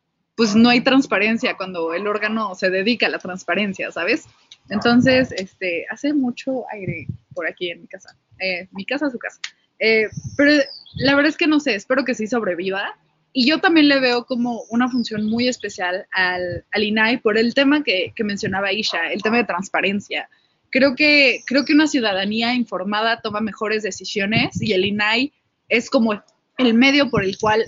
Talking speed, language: 180 wpm, Spanish